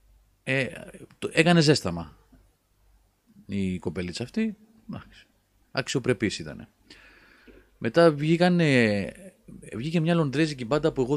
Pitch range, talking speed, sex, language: 100-140 Hz, 95 wpm, male, Greek